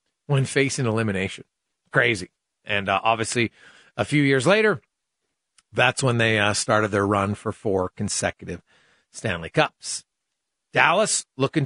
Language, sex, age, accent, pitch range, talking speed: English, male, 40-59, American, 110-165 Hz, 130 wpm